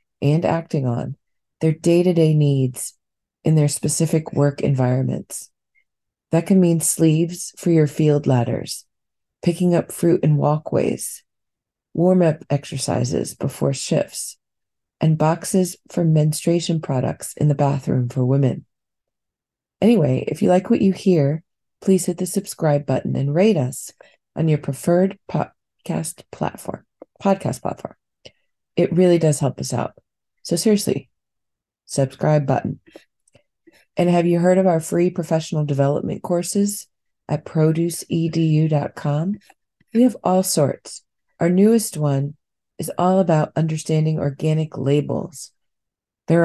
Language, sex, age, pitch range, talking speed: English, female, 40-59, 145-175 Hz, 125 wpm